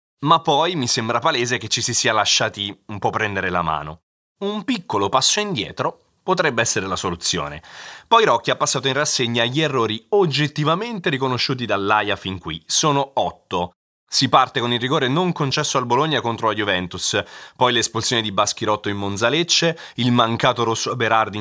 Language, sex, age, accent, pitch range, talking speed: Italian, male, 30-49, native, 105-145 Hz, 170 wpm